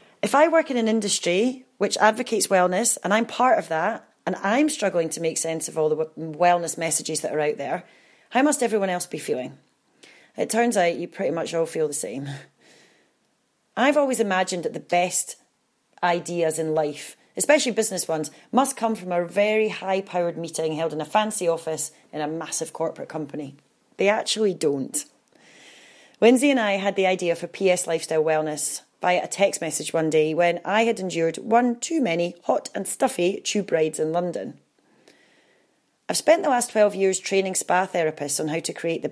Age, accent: 30-49, British